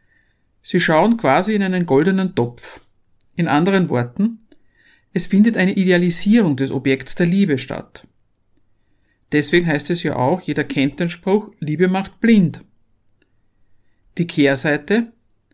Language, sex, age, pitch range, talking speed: German, male, 50-69, 120-195 Hz, 125 wpm